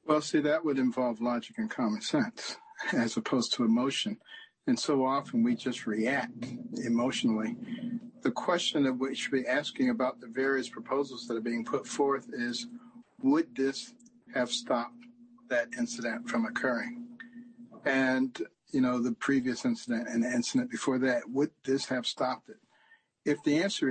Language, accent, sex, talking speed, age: English, American, male, 160 wpm, 50-69